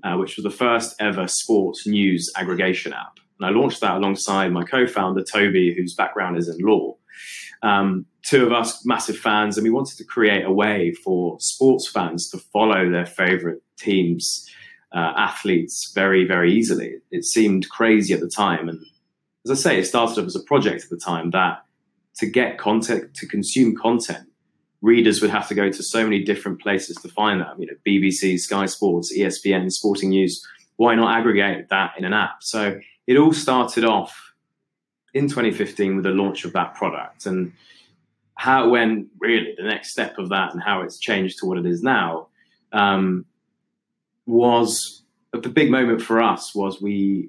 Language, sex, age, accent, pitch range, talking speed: English, male, 20-39, British, 95-115 Hz, 180 wpm